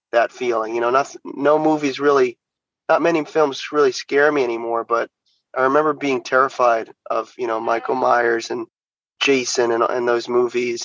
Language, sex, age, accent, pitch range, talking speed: English, male, 30-49, American, 125-160 Hz, 170 wpm